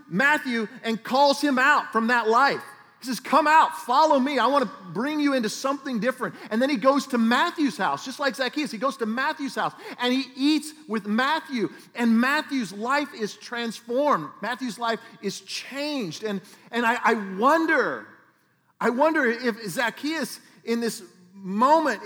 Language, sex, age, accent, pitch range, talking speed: English, male, 40-59, American, 165-260 Hz, 170 wpm